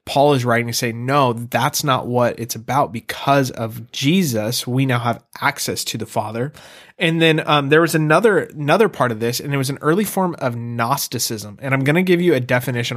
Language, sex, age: English, male, 20-39